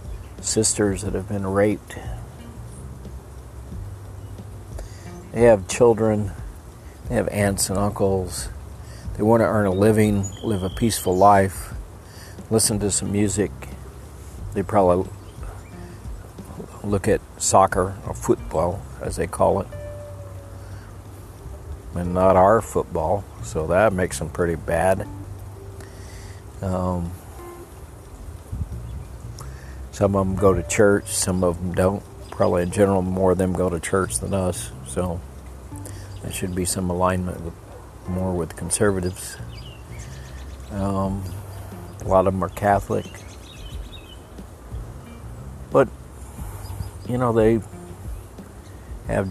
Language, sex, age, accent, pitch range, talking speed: English, male, 50-69, American, 90-100 Hz, 110 wpm